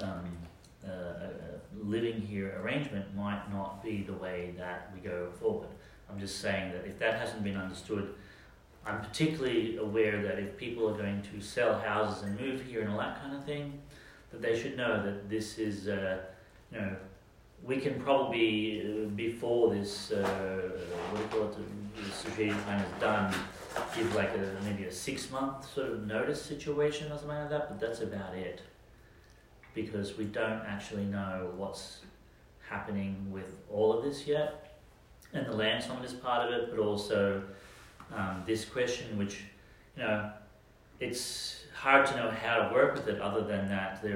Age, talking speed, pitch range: 30-49, 175 wpm, 95-115 Hz